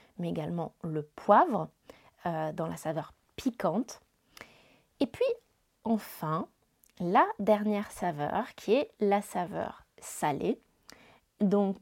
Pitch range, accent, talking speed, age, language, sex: 185-245 Hz, French, 105 wpm, 20-39, French, female